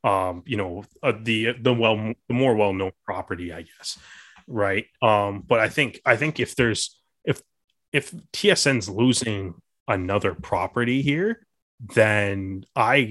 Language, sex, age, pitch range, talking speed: English, male, 20-39, 95-120 Hz, 140 wpm